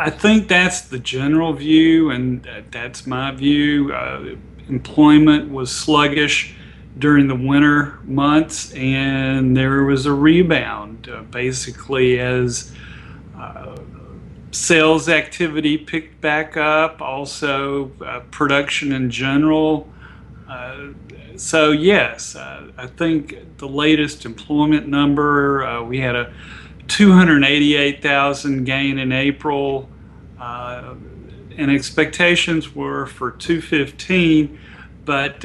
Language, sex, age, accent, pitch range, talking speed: English, male, 40-59, American, 130-155 Hz, 105 wpm